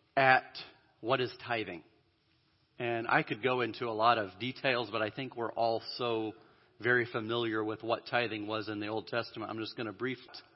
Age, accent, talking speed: 40-59, American, 195 wpm